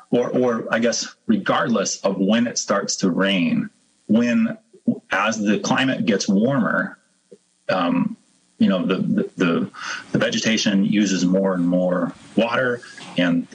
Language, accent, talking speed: English, American, 135 wpm